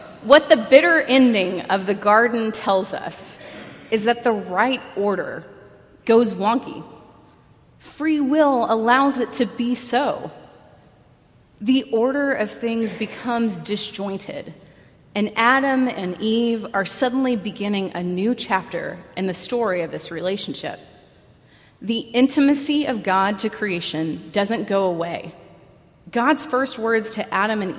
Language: English